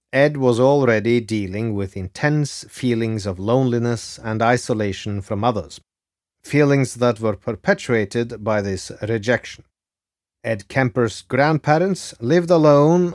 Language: English